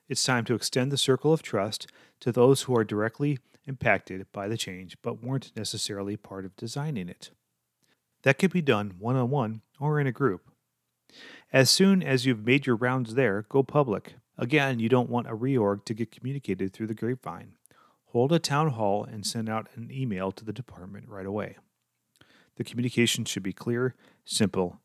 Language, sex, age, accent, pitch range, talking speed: English, male, 40-59, American, 100-130 Hz, 180 wpm